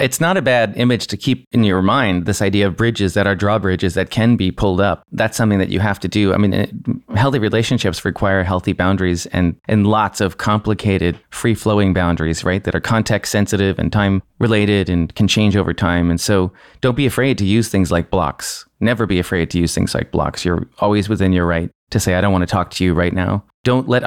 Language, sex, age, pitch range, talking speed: English, male, 30-49, 95-110 Hz, 225 wpm